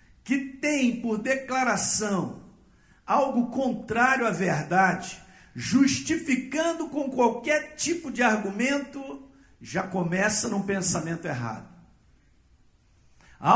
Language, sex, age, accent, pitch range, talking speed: Portuguese, male, 50-69, Brazilian, 155-235 Hz, 90 wpm